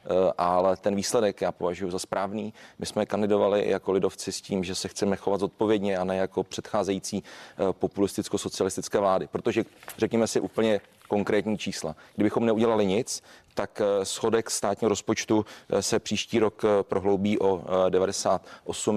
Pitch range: 95-110 Hz